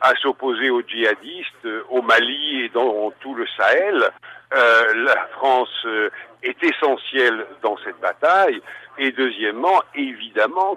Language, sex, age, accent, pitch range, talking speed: Italian, male, 60-79, French, 115-145 Hz, 140 wpm